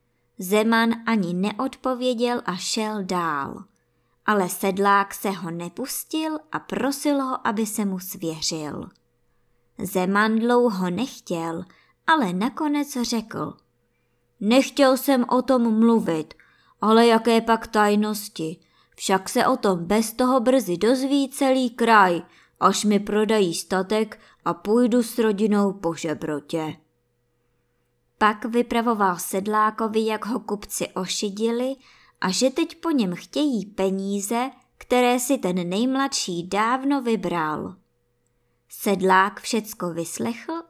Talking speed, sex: 110 wpm, male